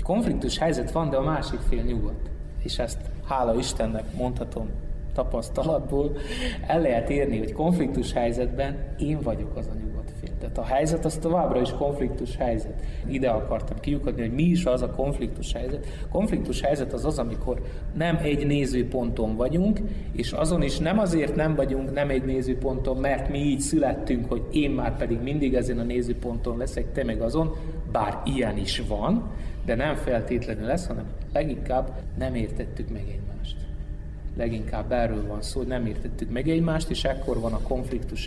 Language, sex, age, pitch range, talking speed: Hungarian, male, 30-49, 115-145 Hz, 170 wpm